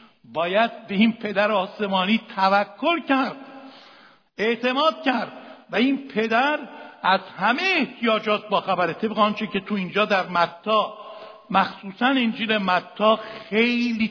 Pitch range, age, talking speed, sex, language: 185-230 Hz, 60-79, 120 wpm, male, Persian